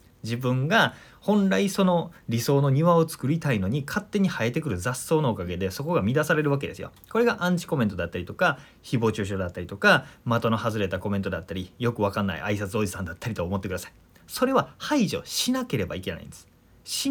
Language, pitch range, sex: Japanese, 100-150 Hz, male